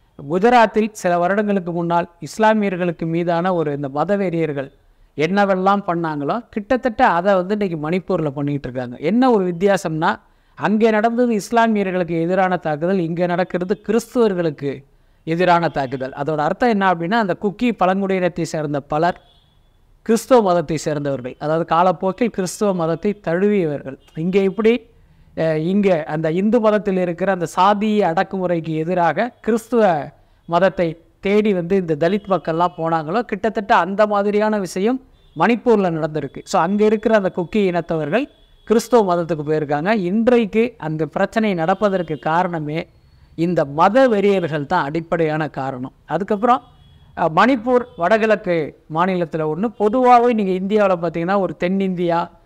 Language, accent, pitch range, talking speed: Tamil, native, 165-215 Hz, 120 wpm